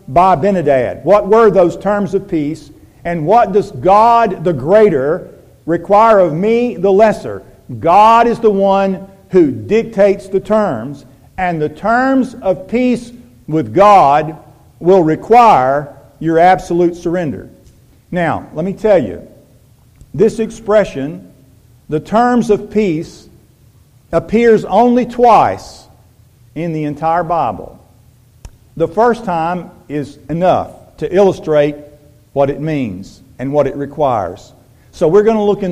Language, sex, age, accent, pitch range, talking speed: English, male, 50-69, American, 145-205 Hz, 130 wpm